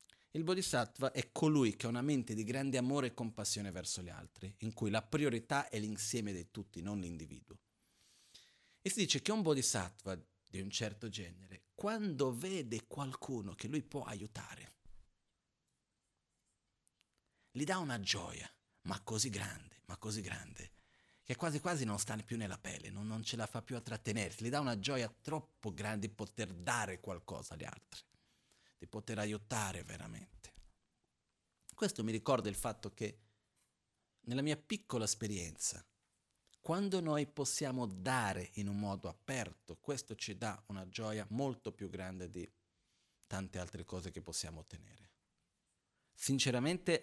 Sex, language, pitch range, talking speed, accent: male, Italian, 95-125 Hz, 150 wpm, native